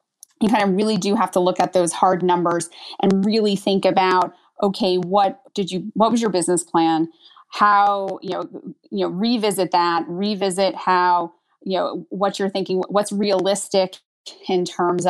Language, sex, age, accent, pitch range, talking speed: English, female, 30-49, American, 180-215 Hz, 170 wpm